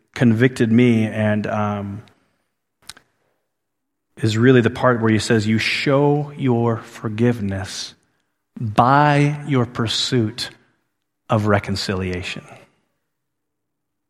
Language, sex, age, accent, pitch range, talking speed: English, male, 40-59, American, 110-150 Hz, 85 wpm